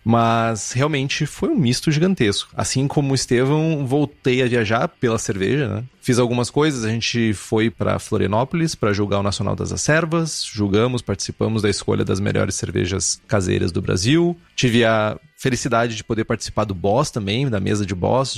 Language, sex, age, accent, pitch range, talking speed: Portuguese, male, 30-49, Brazilian, 105-145 Hz, 175 wpm